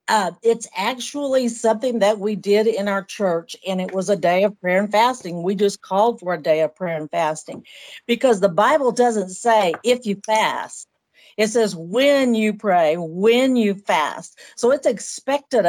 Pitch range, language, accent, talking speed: 190-240 Hz, English, American, 185 wpm